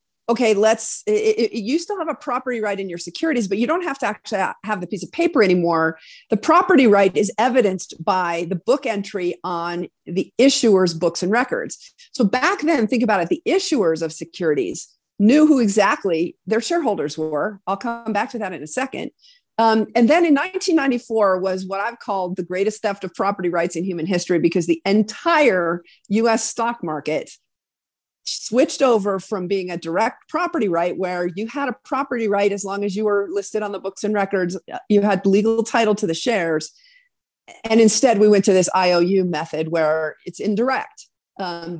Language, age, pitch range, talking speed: English, 40-59, 185-245 Hz, 185 wpm